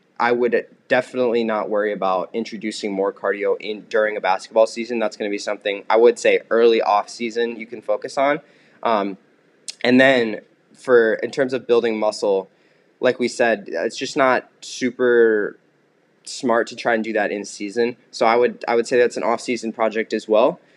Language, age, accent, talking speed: English, 20-39, American, 190 wpm